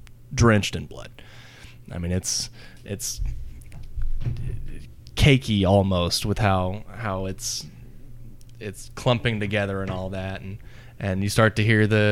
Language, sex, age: English, male, 20-39